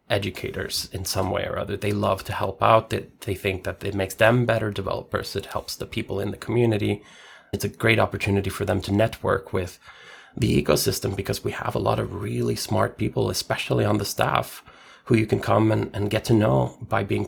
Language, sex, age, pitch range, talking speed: English, male, 30-49, 100-120 Hz, 215 wpm